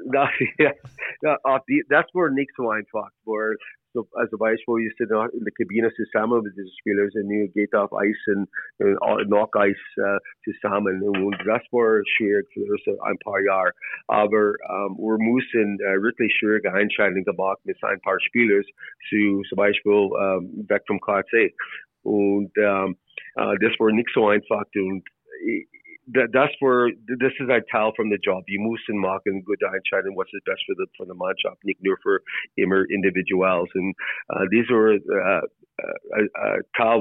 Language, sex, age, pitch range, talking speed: German, male, 40-59, 100-120 Hz, 155 wpm